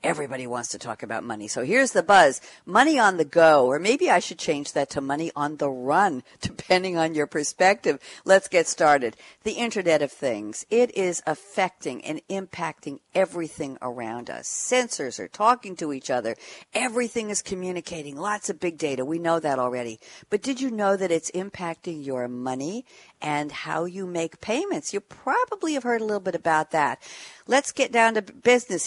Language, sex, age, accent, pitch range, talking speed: English, female, 60-79, American, 155-215 Hz, 185 wpm